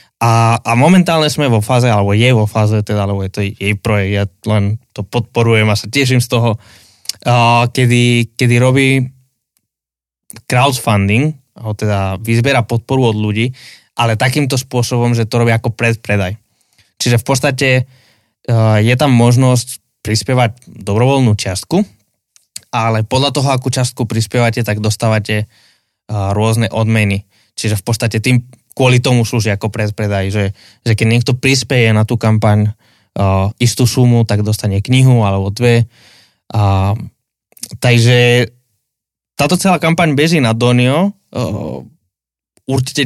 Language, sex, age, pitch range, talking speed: Slovak, male, 20-39, 110-125 Hz, 135 wpm